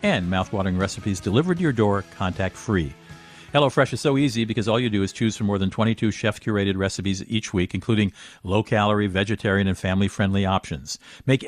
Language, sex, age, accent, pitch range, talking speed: English, male, 50-69, American, 95-120 Hz, 175 wpm